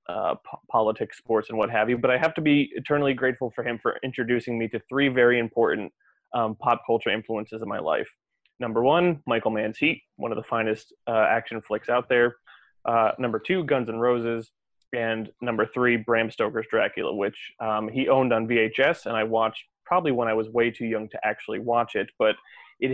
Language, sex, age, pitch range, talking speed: English, male, 20-39, 115-135 Hz, 205 wpm